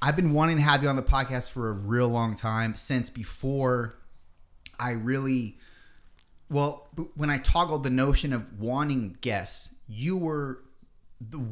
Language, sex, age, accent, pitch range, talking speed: English, male, 30-49, American, 110-145 Hz, 155 wpm